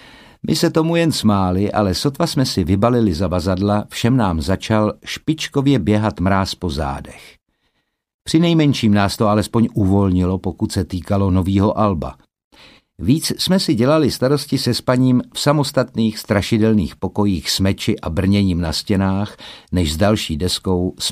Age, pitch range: 50-69, 95-120 Hz